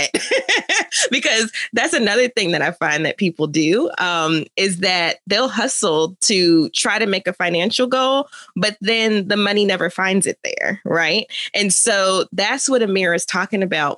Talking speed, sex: 170 wpm, female